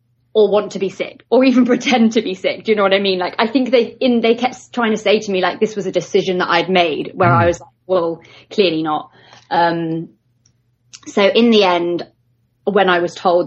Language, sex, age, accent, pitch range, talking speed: English, female, 20-39, British, 175-210 Hz, 235 wpm